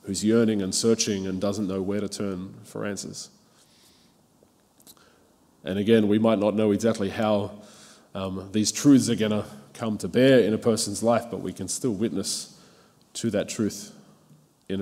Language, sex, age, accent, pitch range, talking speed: English, male, 20-39, Australian, 95-110 Hz, 170 wpm